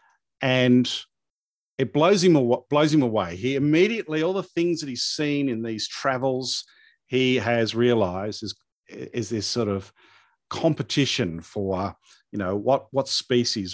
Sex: male